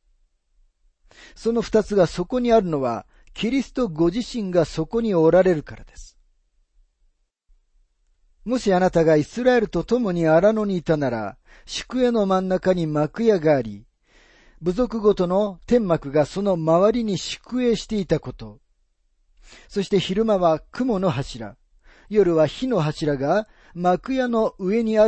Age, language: 40-59, Japanese